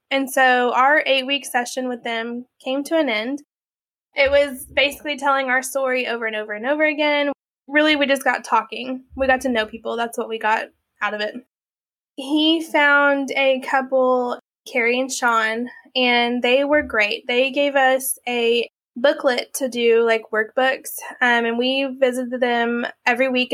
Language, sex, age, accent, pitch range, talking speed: English, female, 20-39, American, 240-275 Hz, 170 wpm